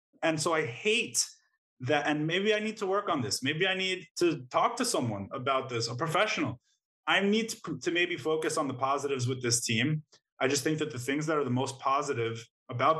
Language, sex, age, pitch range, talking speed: English, male, 20-39, 125-160 Hz, 220 wpm